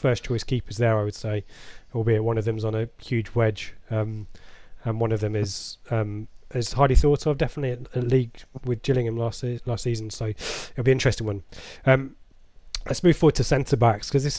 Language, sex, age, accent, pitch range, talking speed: English, male, 20-39, British, 110-135 Hz, 215 wpm